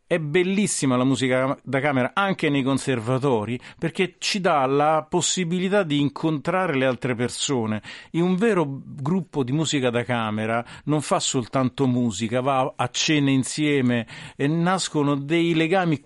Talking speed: 145 wpm